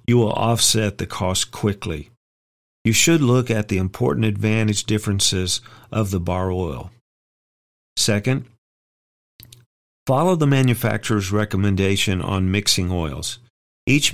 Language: English